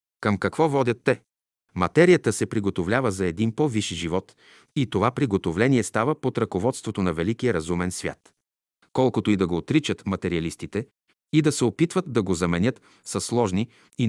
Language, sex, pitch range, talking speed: Bulgarian, male, 95-130 Hz, 160 wpm